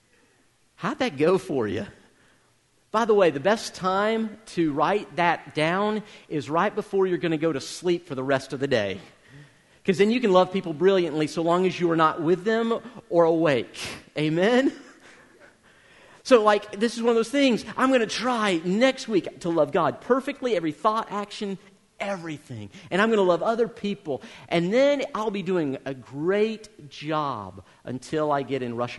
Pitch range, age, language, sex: 130-190 Hz, 40-59, English, male